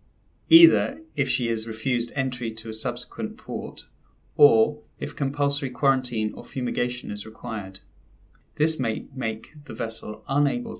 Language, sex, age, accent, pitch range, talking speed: English, male, 30-49, British, 110-140 Hz, 135 wpm